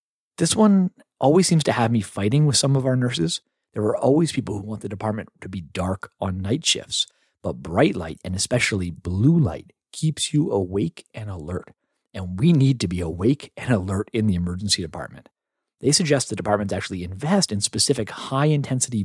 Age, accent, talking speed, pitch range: 40-59, American, 190 wpm, 95-135 Hz